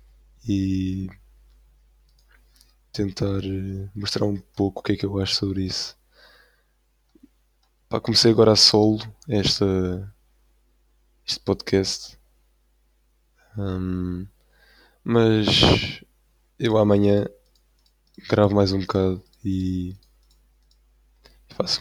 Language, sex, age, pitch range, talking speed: Portuguese, male, 20-39, 70-110 Hz, 80 wpm